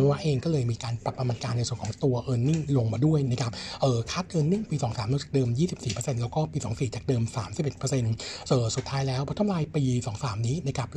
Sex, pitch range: male, 120-145 Hz